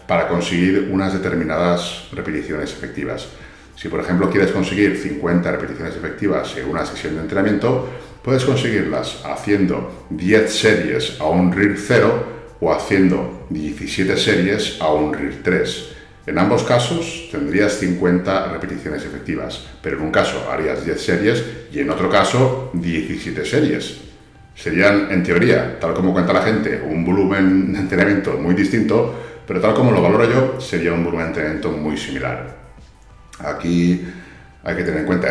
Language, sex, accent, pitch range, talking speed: Spanish, male, Spanish, 85-100 Hz, 150 wpm